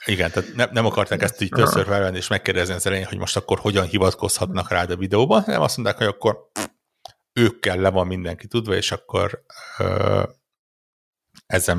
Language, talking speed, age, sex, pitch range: Hungarian, 185 wpm, 60-79, male, 90-110 Hz